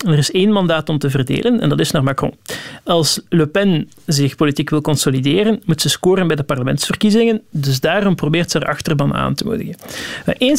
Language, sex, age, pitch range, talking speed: Dutch, male, 40-59, 150-195 Hz, 200 wpm